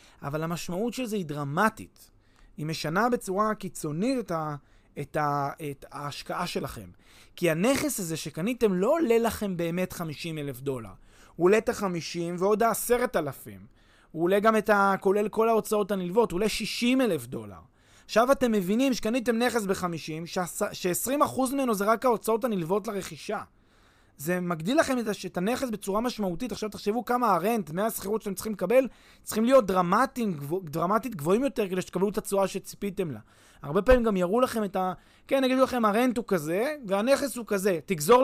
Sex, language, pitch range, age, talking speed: male, Hebrew, 160-225 Hz, 30-49, 170 wpm